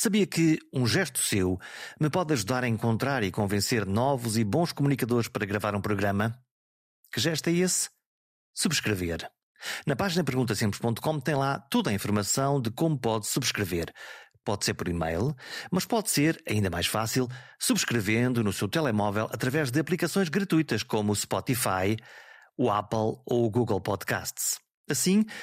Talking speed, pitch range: 155 wpm, 100-135 Hz